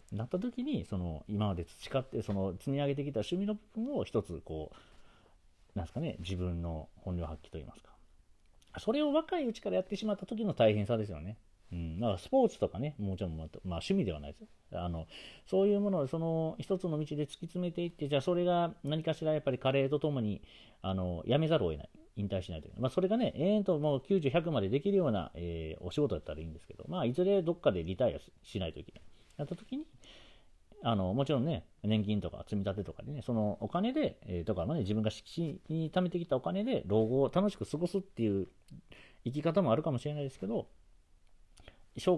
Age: 40-59